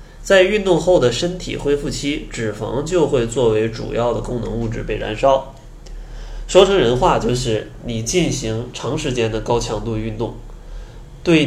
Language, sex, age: Chinese, male, 20-39